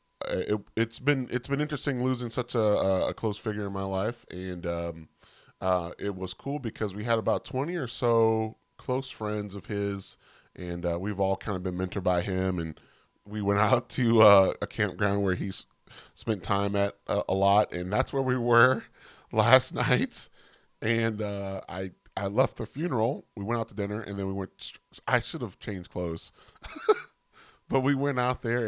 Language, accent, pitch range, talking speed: English, American, 90-115 Hz, 195 wpm